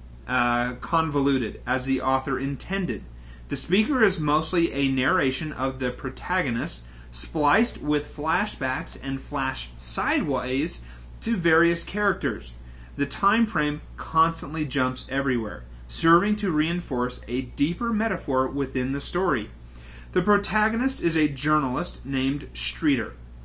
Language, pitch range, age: English, 105-170 Hz, 30-49